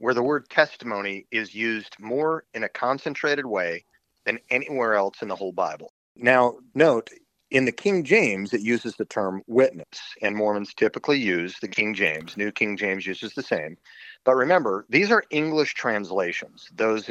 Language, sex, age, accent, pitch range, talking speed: English, male, 40-59, American, 100-150 Hz, 170 wpm